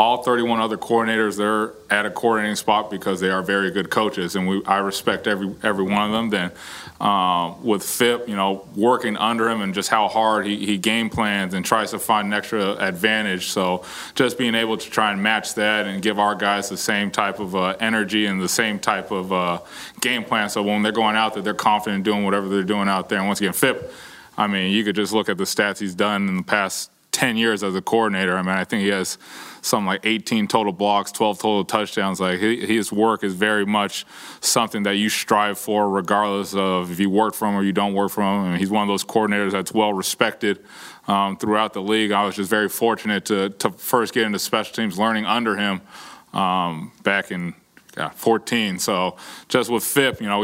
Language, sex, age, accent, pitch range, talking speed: English, male, 20-39, American, 95-110 Hz, 225 wpm